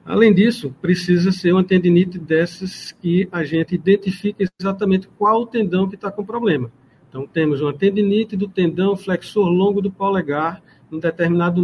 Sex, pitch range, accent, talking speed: male, 160-195 Hz, Brazilian, 160 wpm